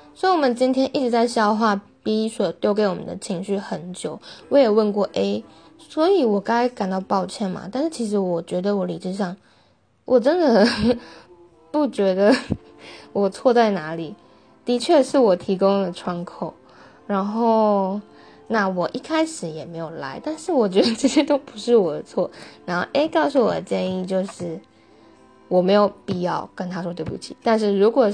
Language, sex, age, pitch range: English, female, 10-29, 180-235 Hz